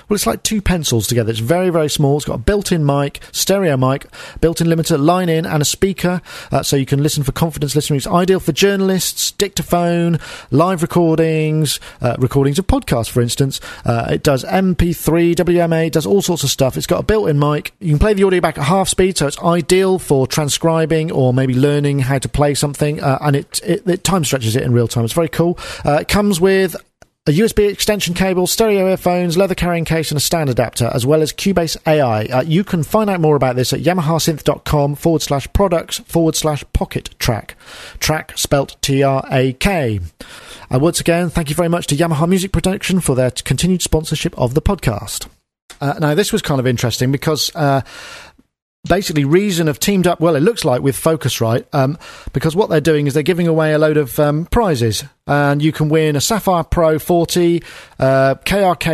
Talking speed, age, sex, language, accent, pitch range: 200 wpm, 40-59, male, English, British, 140-175 Hz